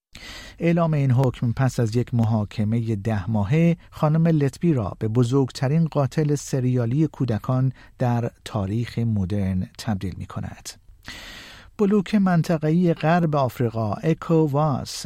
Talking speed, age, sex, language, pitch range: 110 wpm, 50-69, male, Persian, 115-155 Hz